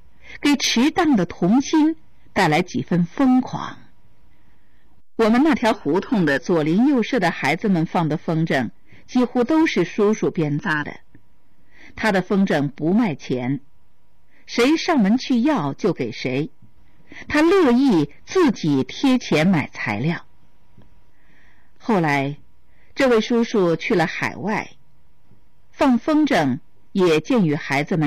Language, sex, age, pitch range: English, female, 50-69, 170-265 Hz